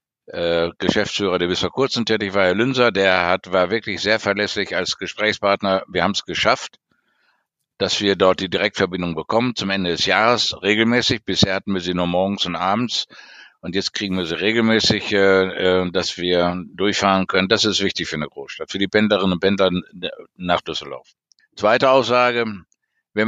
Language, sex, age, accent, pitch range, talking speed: German, male, 60-79, German, 95-120 Hz, 170 wpm